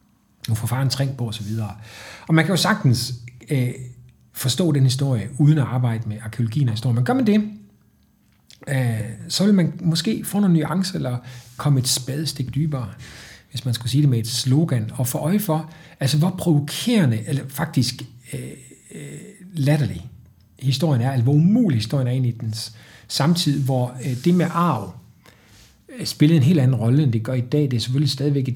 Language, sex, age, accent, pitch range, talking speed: Danish, male, 60-79, native, 120-155 Hz, 190 wpm